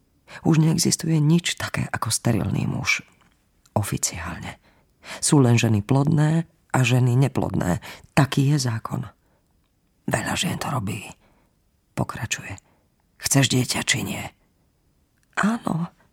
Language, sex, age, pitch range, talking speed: Slovak, female, 40-59, 115-160 Hz, 105 wpm